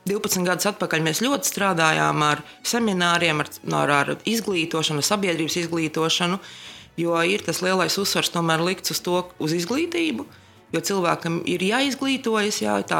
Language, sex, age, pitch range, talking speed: English, female, 20-39, 155-190 Hz, 145 wpm